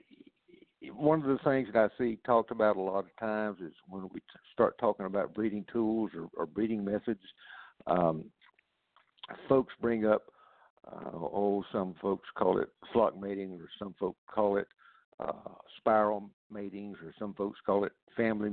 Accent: American